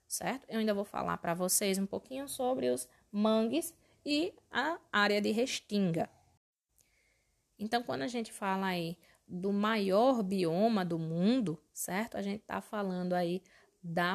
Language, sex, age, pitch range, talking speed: Portuguese, female, 20-39, 175-215 Hz, 150 wpm